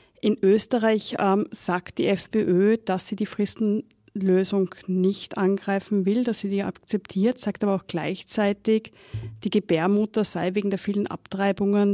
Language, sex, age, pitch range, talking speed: German, female, 30-49, 190-215 Hz, 140 wpm